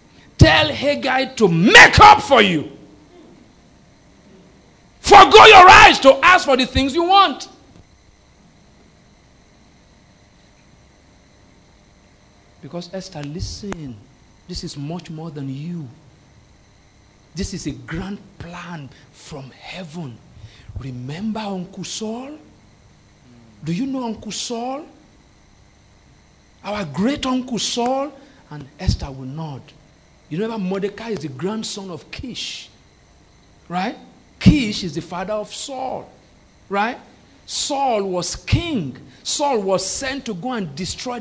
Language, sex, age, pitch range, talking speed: English, male, 50-69, 175-265 Hz, 110 wpm